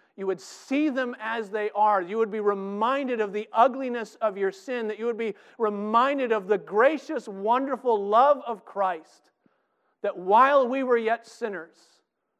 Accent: American